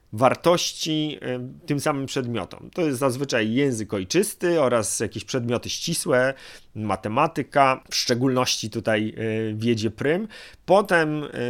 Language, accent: Polish, native